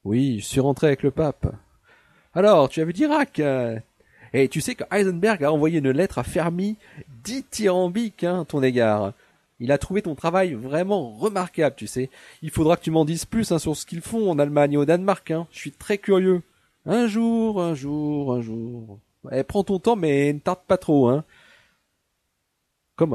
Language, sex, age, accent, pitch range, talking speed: French, male, 30-49, French, 110-155 Hz, 195 wpm